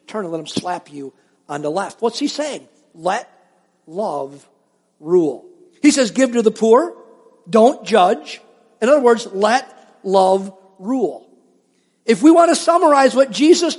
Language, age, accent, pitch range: English, 50-69, American, 155-235 Hz